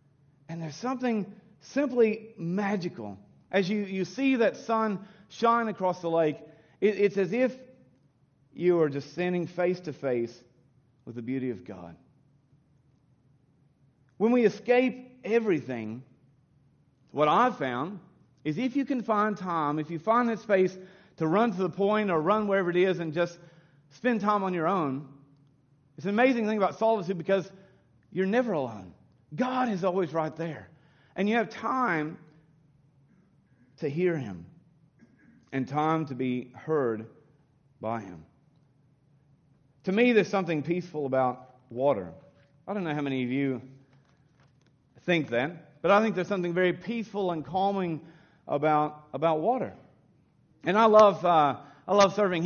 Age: 40-59